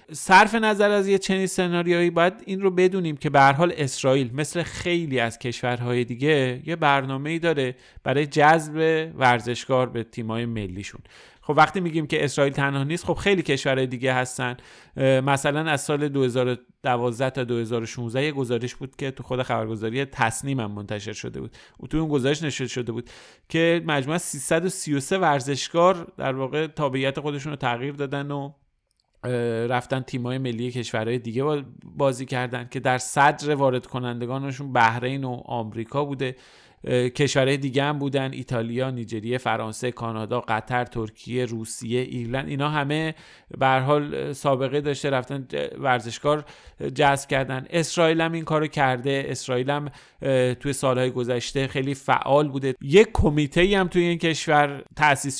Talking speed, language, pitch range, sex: 145 wpm, Persian, 125-145 Hz, male